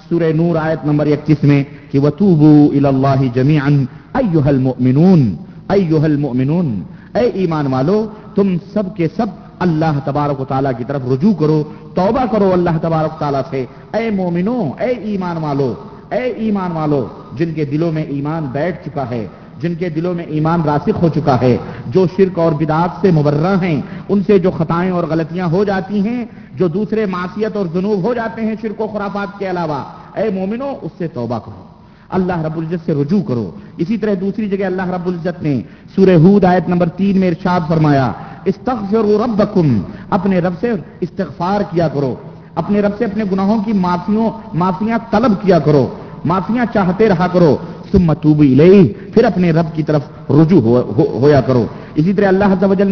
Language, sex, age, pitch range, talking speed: Urdu, male, 50-69, 150-200 Hz, 135 wpm